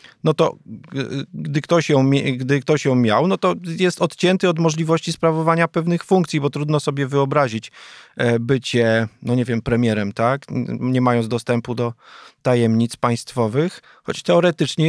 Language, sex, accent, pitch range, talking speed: Polish, male, native, 120-160 Hz, 145 wpm